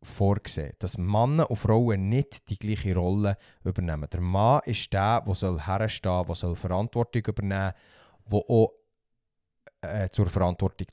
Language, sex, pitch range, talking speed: German, male, 95-120 Hz, 135 wpm